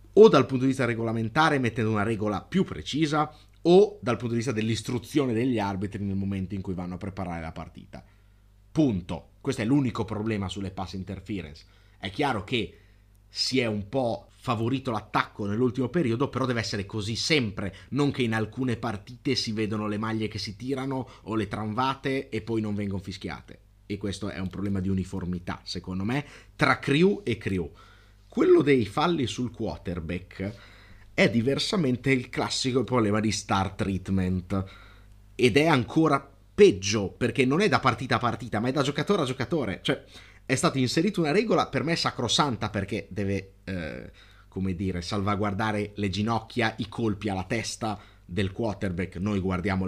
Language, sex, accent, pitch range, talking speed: Italian, male, native, 95-125 Hz, 170 wpm